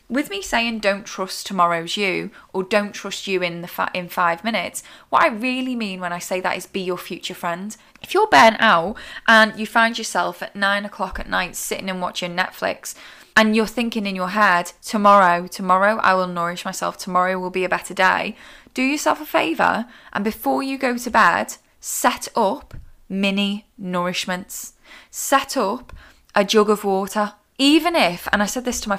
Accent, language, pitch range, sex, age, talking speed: British, English, 185-225 Hz, female, 10-29, 195 wpm